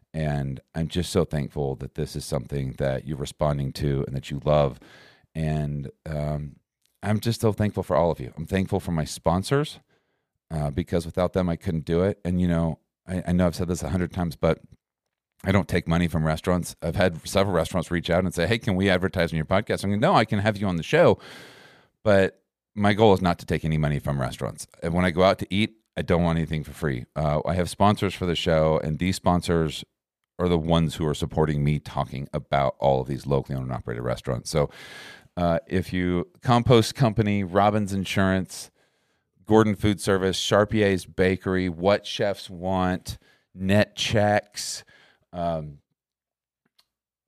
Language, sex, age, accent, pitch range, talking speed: English, male, 40-59, American, 80-95 Hz, 195 wpm